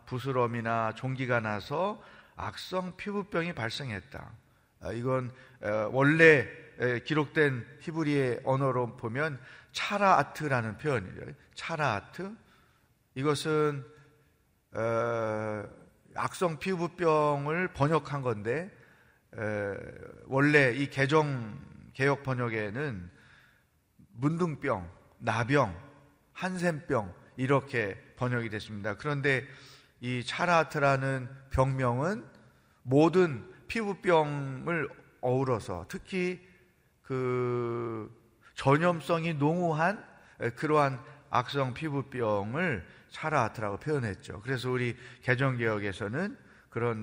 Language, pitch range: Korean, 120-155 Hz